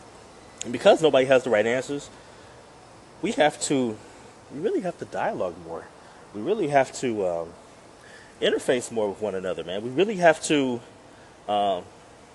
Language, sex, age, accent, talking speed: English, male, 20-39, American, 155 wpm